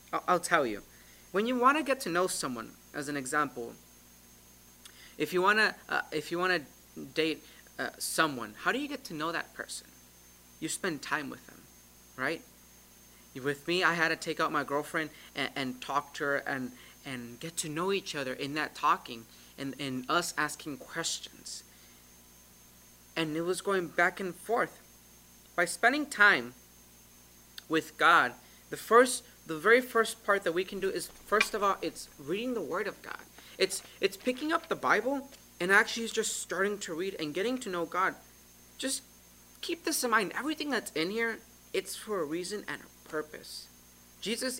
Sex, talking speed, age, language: male, 180 wpm, 30-49, English